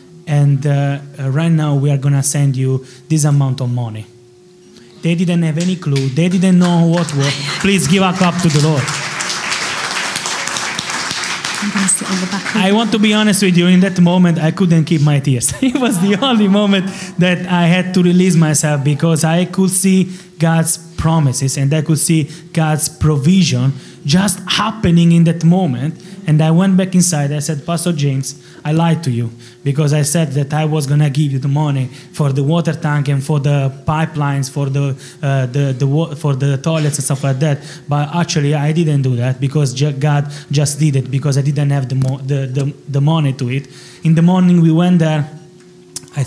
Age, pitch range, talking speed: 20-39, 140-175 Hz, 195 wpm